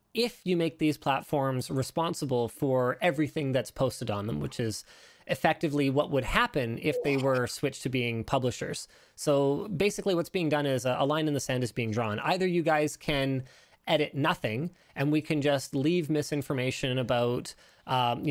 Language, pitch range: English, 130-160 Hz